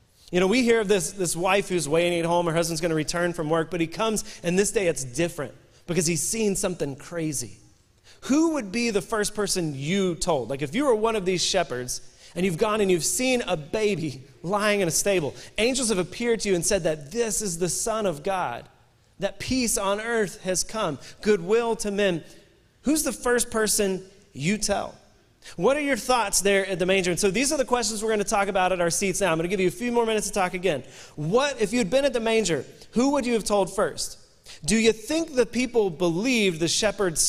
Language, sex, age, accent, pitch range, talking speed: English, male, 30-49, American, 170-220 Hz, 235 wpm